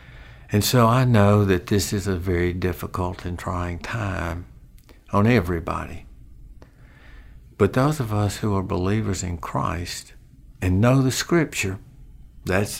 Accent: American